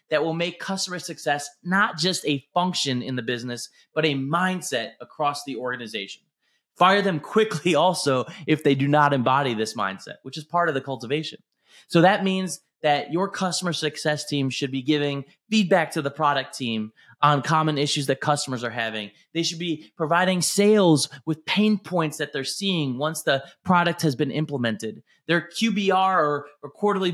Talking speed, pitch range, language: 175 wpm, 145-185 Hz, English